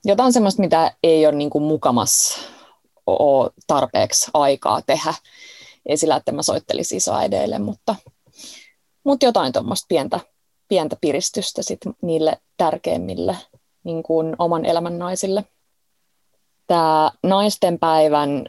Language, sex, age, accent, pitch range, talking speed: Finnish, female, 20-39, native, 150-190 Hz, 95 wpm